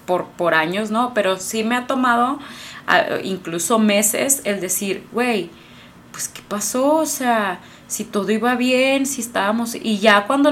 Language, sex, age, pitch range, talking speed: Spanish, female, 20-39, 190-240 Hz, 165 wpm